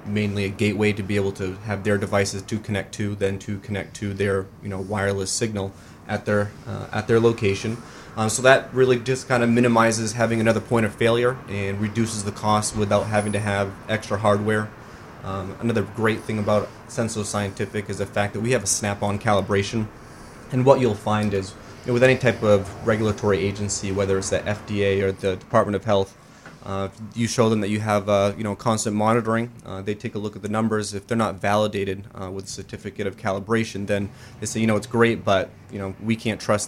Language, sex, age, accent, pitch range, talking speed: English, male, 20-39, American, 100-110 Hz, 215 wpm